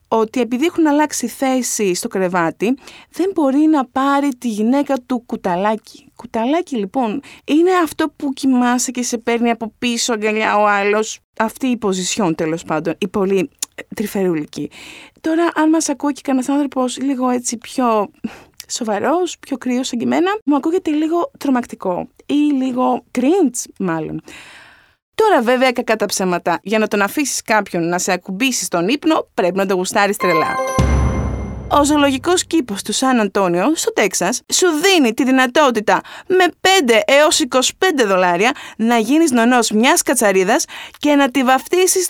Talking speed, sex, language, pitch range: 150 wpm, female, Greek, 220-300 Hz